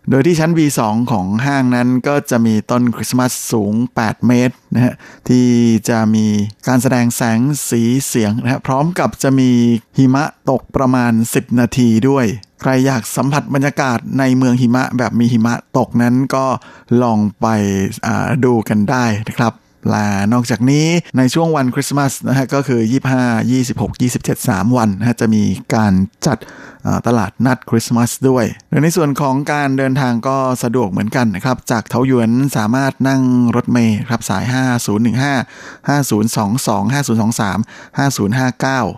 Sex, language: male, Thai